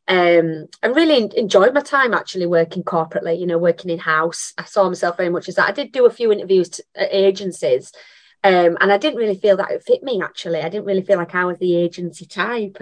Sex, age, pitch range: female, 30-49, 170-200 Hz